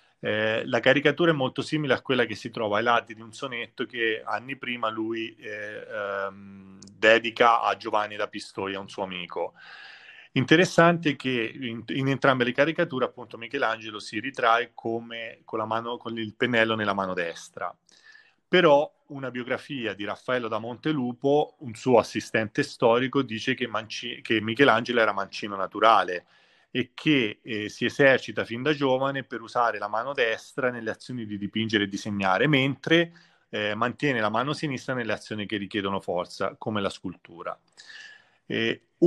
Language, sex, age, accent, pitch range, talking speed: Italian, male, 30-49, native, 105-130 Hz, 155 wpm